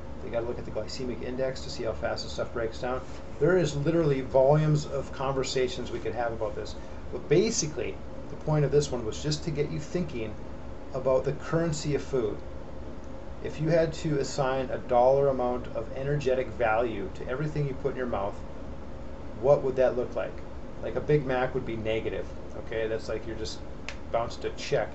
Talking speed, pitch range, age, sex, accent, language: 200 wpm, 100-135 Hz, 30-49, male, American, English